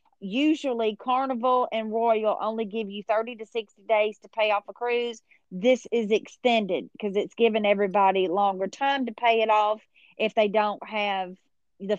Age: 30-49